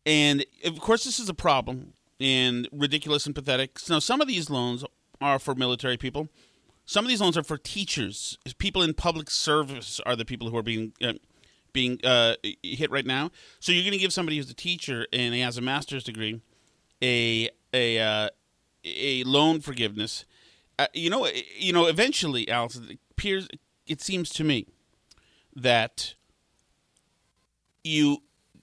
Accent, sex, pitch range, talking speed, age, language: American, male, 130-165 Hz, 170 wpm, 30-49, English